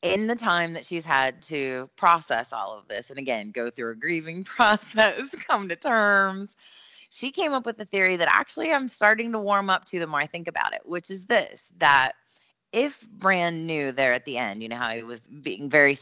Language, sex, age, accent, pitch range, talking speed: English, female, 30-49, American, 130-175 Hz, 220 wpm